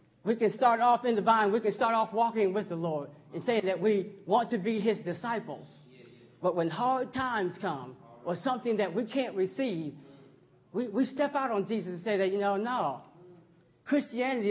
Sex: male